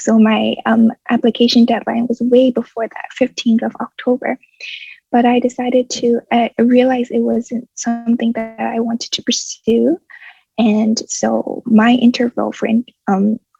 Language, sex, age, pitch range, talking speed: English, female, 20-39, 230-250 Hz, 145 wpm